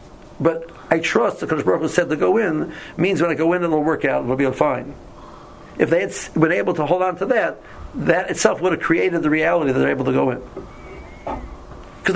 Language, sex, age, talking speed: English, male, 60-79, 215 wpm